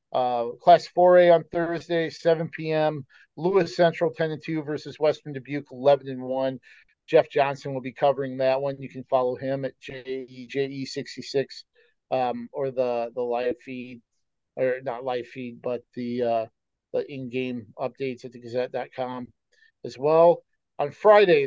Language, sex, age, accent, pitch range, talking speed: English, male, 40-59, American, 130-155 Hz, 135 wpm